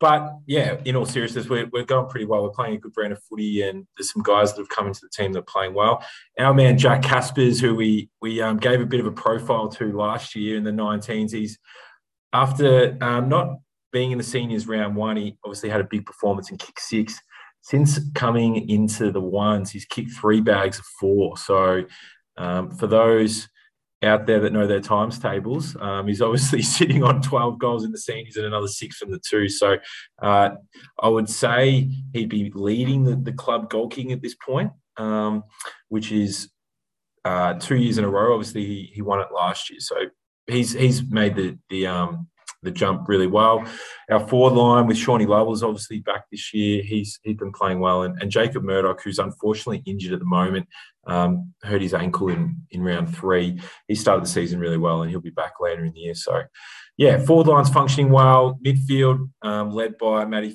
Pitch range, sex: 100-120 Hz, male